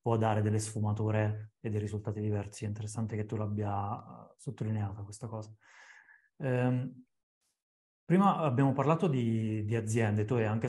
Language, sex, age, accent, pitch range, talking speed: Italian, male, 30-49, native, 110-130 Hz, 145 wpm